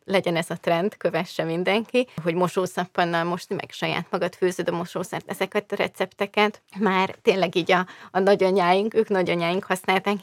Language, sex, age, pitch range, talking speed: Hungarian, female, 20-39, 175-220 Hz, 160 wpm